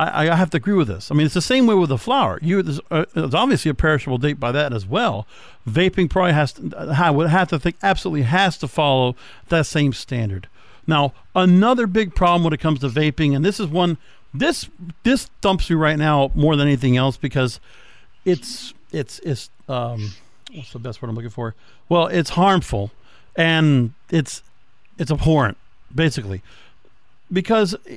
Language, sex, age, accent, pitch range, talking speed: English, male, 50-69, American, 130-180 Hz, 180 wpm